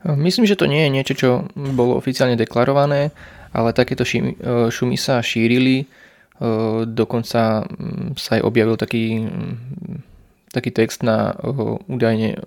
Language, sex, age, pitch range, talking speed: Slovak, male, 20-39, 110-120 Hz, 115 wpm